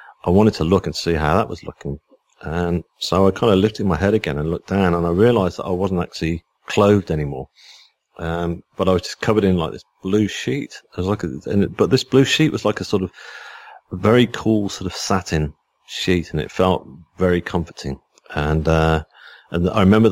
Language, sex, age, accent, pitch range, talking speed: English, male, 40-59, British, 80-95 Hz, 220 wpm